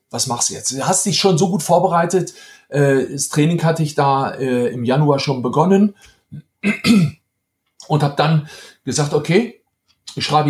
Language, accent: German, German